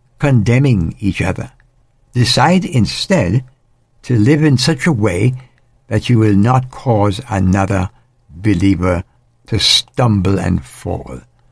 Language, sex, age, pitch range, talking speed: English, male, 60-79, 105-125 Hz, 115 wpm